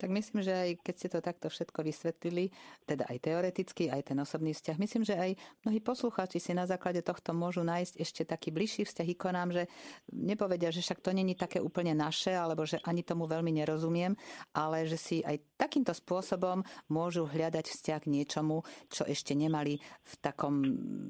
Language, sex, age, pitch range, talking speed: Slovak, female, 50-69, 155-190 Hz, 180 wpm